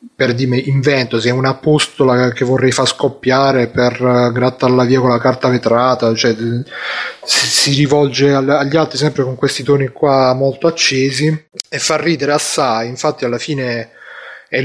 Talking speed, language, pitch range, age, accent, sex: 160 wpm, Italian, 120-145 Hz, 30-49, native, male